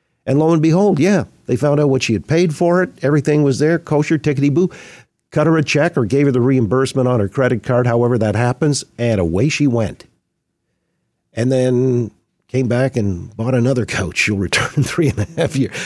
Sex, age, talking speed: male, 50-69, 205 wpm